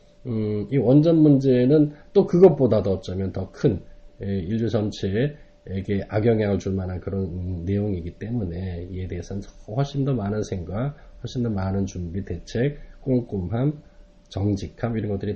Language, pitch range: Korean, 90-115 Hz